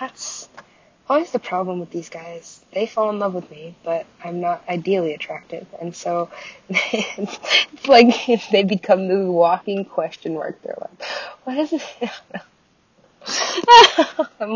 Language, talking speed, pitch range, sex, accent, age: English, 140 wpm, 185-260 Hz, female, American, 20-39